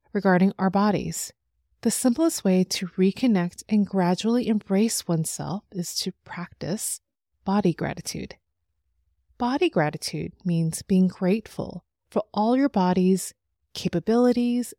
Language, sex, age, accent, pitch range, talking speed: English, female, 30-49, American, 165-215 Hz, 110 wpm